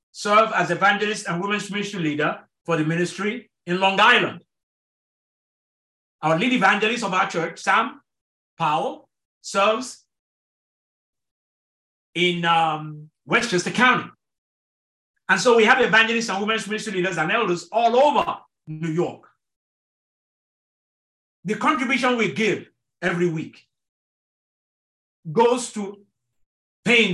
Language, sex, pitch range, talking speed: English, male, 160-220 Hz, 110 wpm